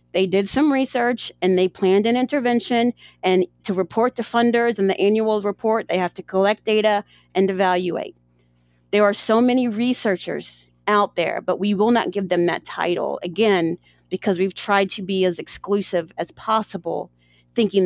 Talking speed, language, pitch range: 170 wpm, English, 185-230 Hz